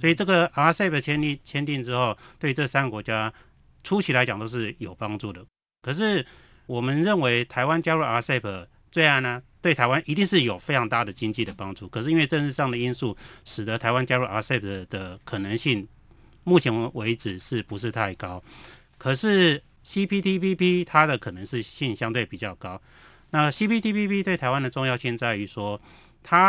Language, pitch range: Chinese, 110-155 Hz